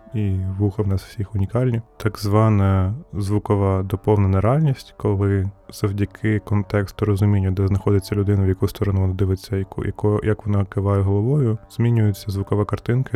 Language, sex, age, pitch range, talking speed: Ukrainian, male, 20-39, 100-110 Hz, 135 wpm